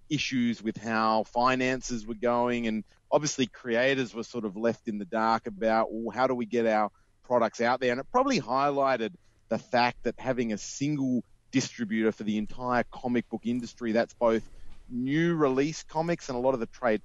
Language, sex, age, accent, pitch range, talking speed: English, male, 30-49, Australian, 115-140 Hz, 185 wpm